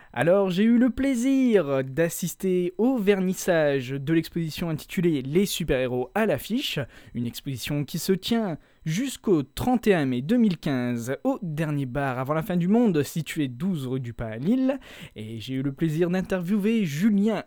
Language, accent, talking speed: French, French, 160 wpm